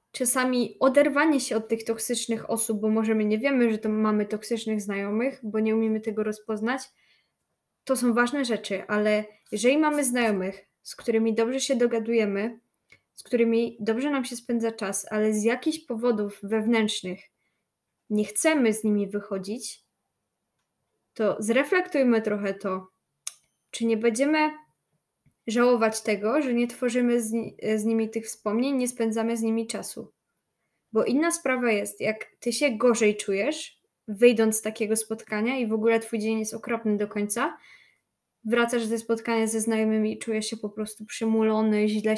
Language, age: Polish, 10-29